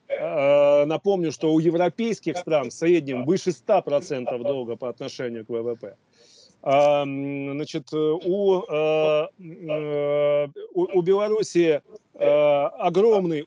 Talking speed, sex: 85 wpm, male